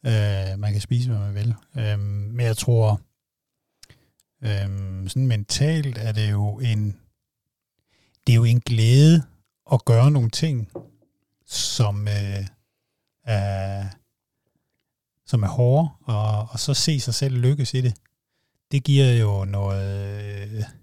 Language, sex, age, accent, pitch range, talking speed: Danish, male, 60-79, native, 105-135 Hz, 135 wpm